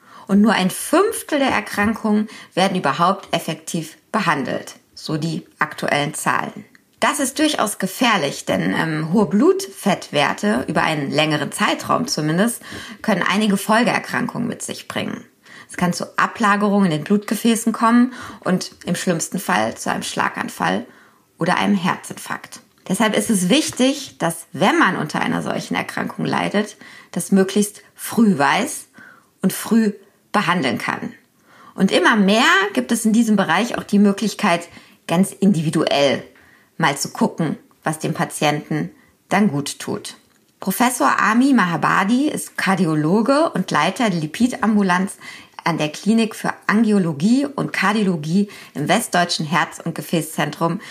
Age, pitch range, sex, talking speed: 20-39, 175-230 Hz, female, 135 wpm